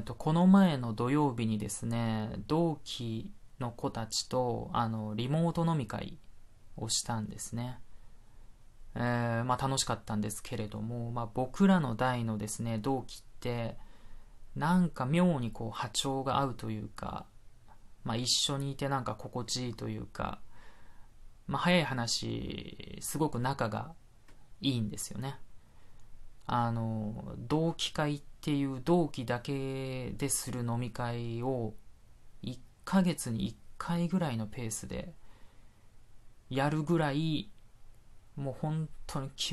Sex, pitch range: male, 110-140 Hz